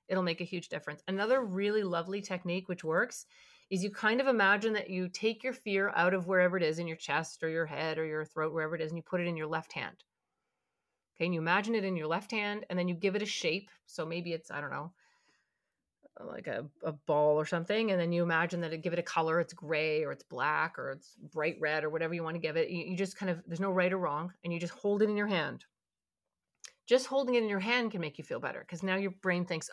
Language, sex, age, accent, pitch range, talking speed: English, female, 30-49, American, 165-215 Hz, 270 wpm